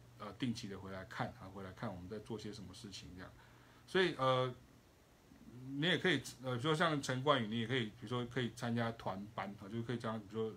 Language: Chinese